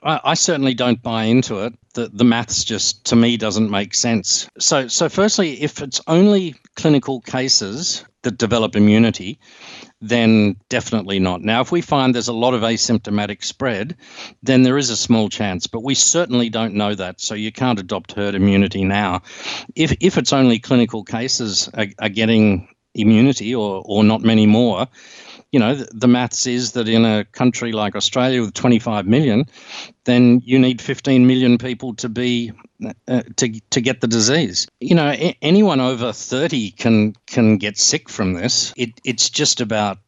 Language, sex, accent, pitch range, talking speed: English, male, Australian, 110-130 Hz, 175 wpm